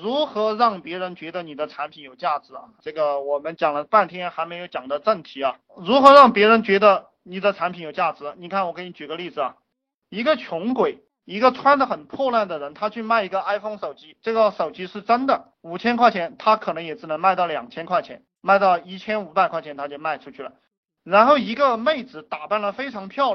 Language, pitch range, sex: Chinese, 165-235 Hz, male